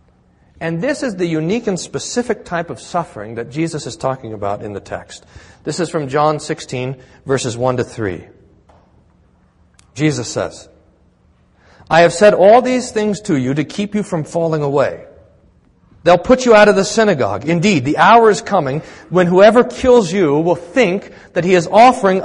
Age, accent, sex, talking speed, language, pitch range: 40-59, American, male, 175 wpm, English, 145-220 Hz